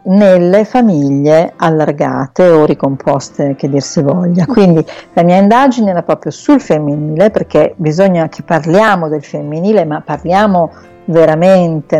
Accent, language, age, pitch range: native, Italian, 50-69, 155-195 Hz